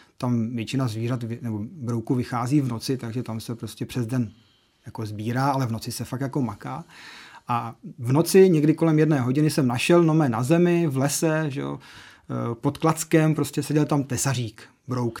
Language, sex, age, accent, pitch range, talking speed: Czech, male, 40-59, native, 120-160 Hz, 180 wpm